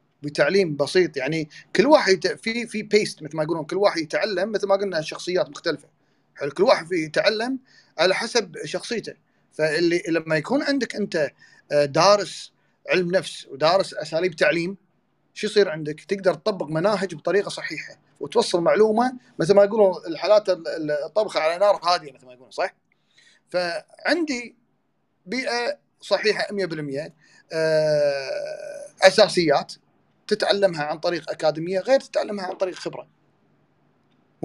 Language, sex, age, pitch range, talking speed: Arabic, male, 40-59, 165-210 Hz, 125 wpm